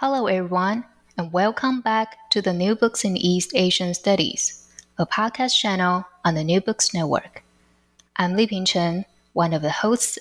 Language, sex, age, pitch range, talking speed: English, female, 20-39, 170-215 Hz, 165 wpm